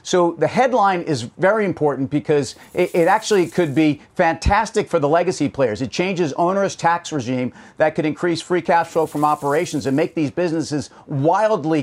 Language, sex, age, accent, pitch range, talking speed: English, male, 40-59, American, 150-175 Hz, 170 wpm